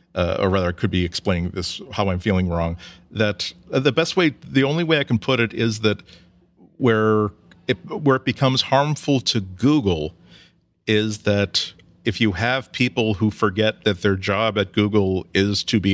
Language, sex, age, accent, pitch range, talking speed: English, male, 40-59, American, 95-110 Hz, 180 wpm